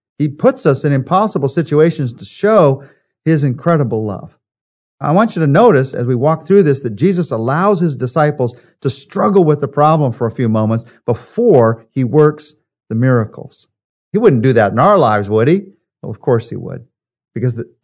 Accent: American